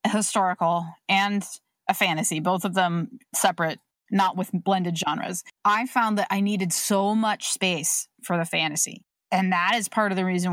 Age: 30-49